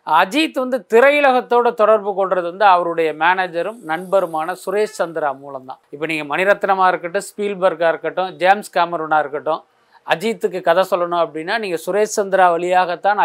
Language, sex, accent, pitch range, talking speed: Tamil, male, native, 170-210 Hz, 130 wpm